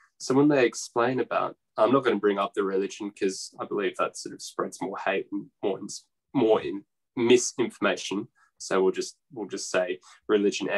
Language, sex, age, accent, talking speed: English, male, 10-29, Australian, 185 wpm